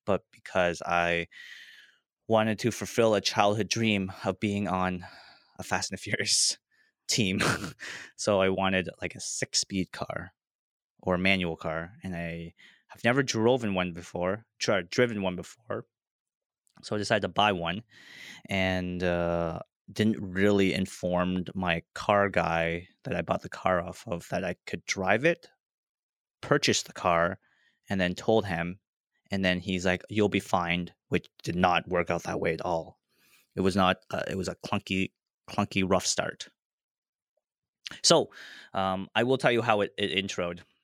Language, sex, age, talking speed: English, male, 20-39, 160 wpm